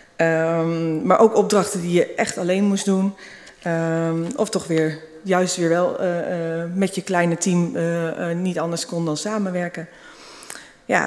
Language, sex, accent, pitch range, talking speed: Dutch, female, Dutch, 165-195 Hz, 155 wpm